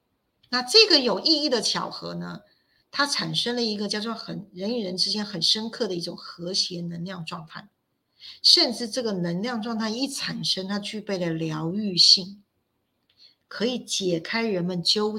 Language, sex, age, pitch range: Chinese, female, 50-69, 175-245 Hz